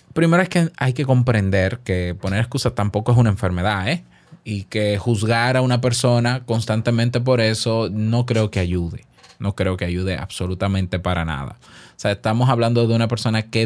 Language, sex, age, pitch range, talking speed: Spanish, male, 20-39, 105-135 Hz, 185 wpm